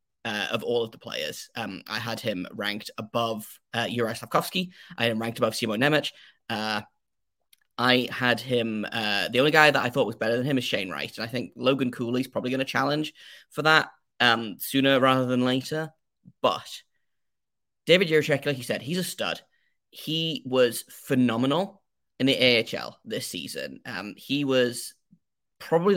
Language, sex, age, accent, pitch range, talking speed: English, male, 10-29, British, 120-150 Hz, 180 wpm